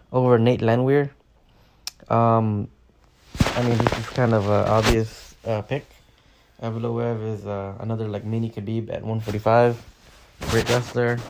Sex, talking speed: male, 135 wpm